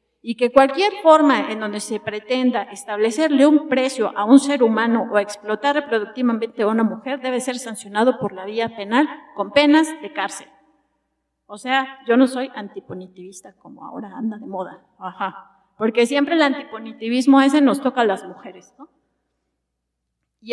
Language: Spanish